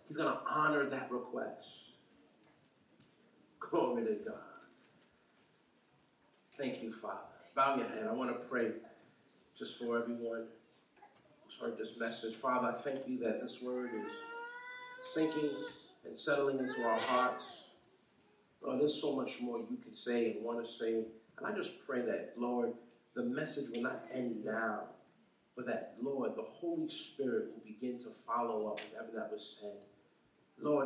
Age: 40-59